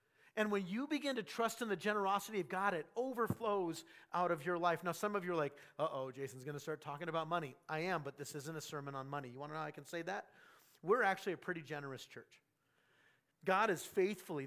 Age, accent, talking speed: 40-59, American, 245 wpm